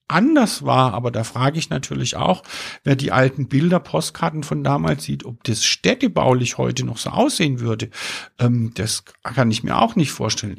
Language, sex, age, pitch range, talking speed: German, male, 50-69, 120-175 Hz, 170 wpm